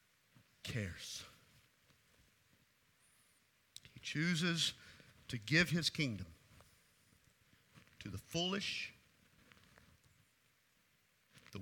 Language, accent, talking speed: English, American, 55 wpm